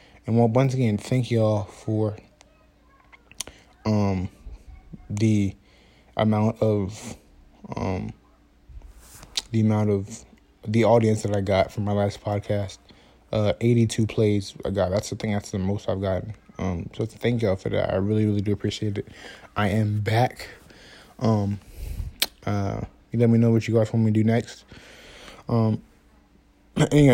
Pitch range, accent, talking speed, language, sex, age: 100-115 Hz, American, 145 wpm, English, male, 20-39